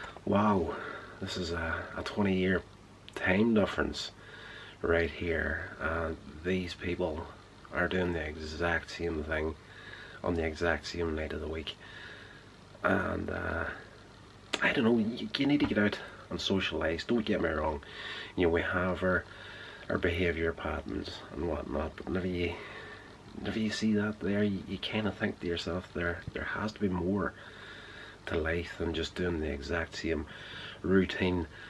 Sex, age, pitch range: male, 30-49, 85-100 Hz